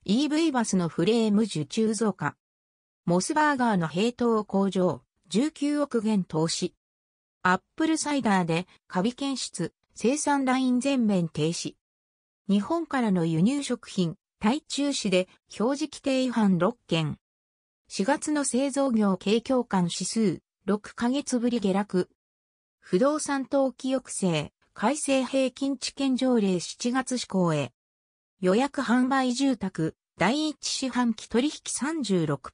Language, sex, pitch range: Japanese, female, 170-265 Hz